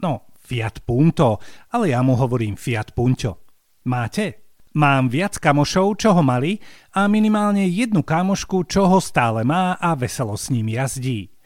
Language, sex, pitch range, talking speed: Slovak, male, 125-190 Hz, 150 wpm